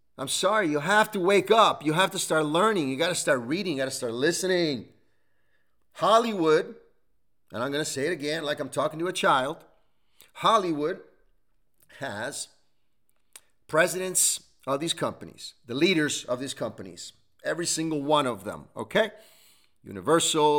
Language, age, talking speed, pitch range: English, 40-59, 155 wpm, 130-185 Hz